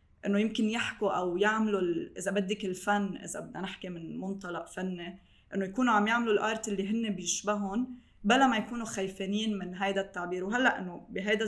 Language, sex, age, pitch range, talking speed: Arabic, female, 20-39, 185-210 Hz, 165 wpm